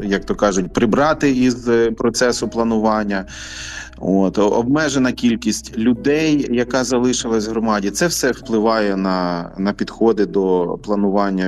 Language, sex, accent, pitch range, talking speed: Ukrainian, male, native, 95-125 Hz, 115 wpm